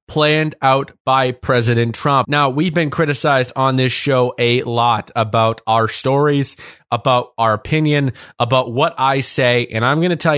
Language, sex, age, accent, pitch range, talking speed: English, male, 20-39, American, 125-150 Hz, 170 wpm